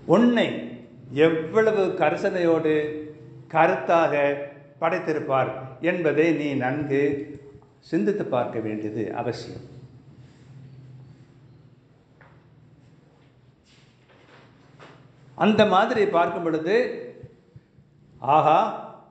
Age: 60-79